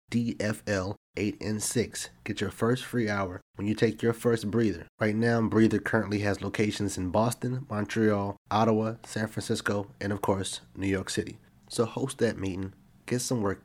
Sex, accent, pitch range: male, American, 100-120 Hz